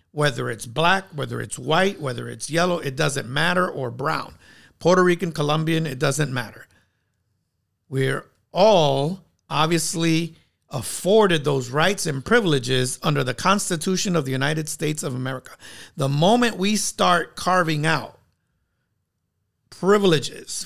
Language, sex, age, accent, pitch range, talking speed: English, male, 50-69, American, 130-170 Hz, 130 wpm